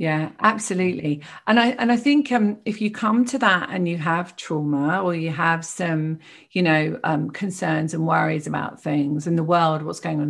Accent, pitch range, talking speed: British, 165-210 Hz, 210 wpm